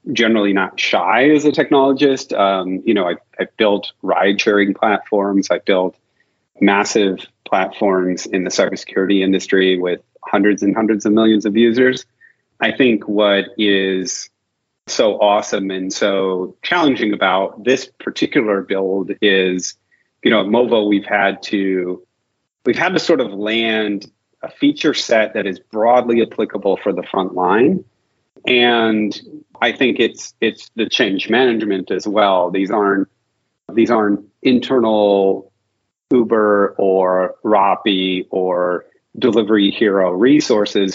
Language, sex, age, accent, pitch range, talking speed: English, male, 30-49, American, 95-110 Hz, 135 wpm